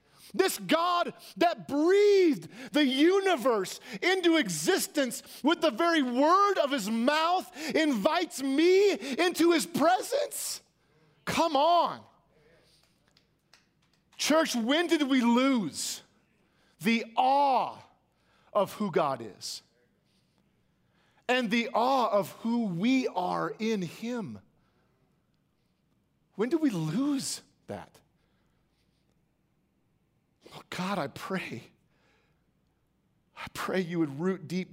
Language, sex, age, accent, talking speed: English, male, 40-59, American, 95 wpm